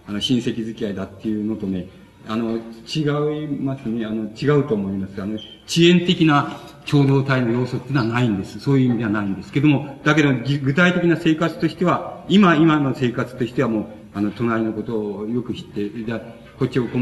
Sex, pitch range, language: male, 110-145 Hz, Japanese